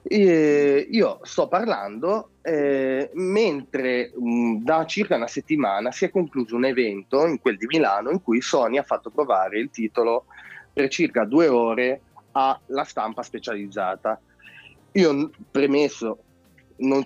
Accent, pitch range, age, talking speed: native, 130-190 Hz, 30-49, 130 wpm